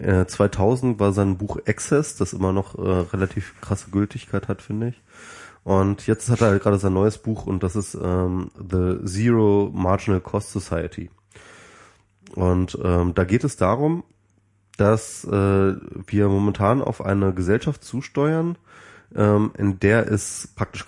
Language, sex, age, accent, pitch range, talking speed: German, male, 20-39, German, 95-110 Hz, 145 wpm